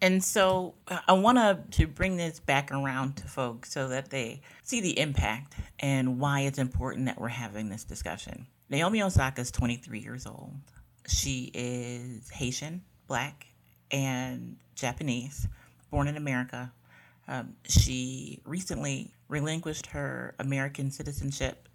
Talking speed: 140 wpm